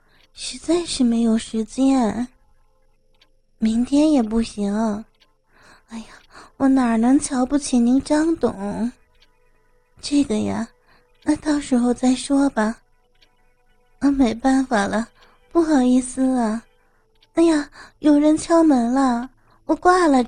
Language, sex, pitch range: Chinese, female, 210-265 Hz